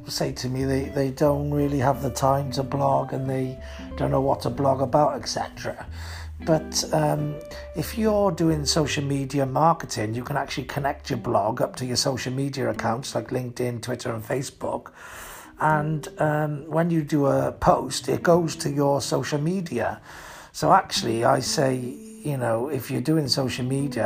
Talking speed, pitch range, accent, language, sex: 175 wpm, 120-150 Hz, British, English, male